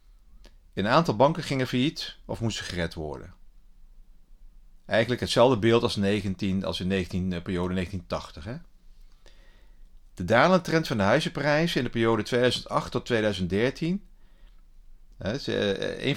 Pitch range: 95-120 Hz